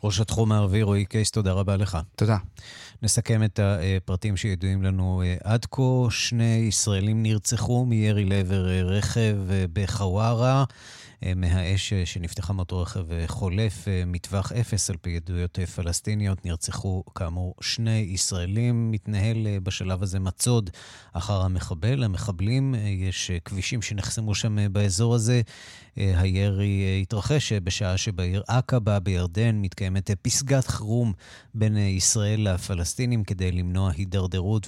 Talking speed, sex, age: 115 wpm, male, 30-49